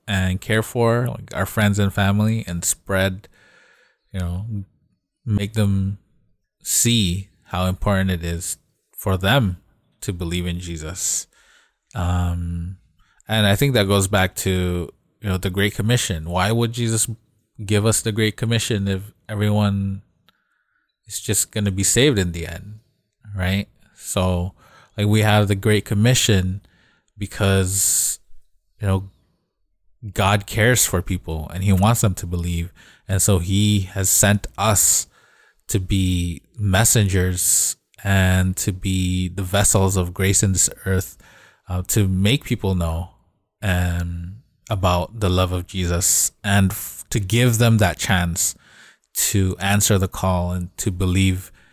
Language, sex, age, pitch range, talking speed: English, male, 20-39, 90-105 Hz, 145 wpm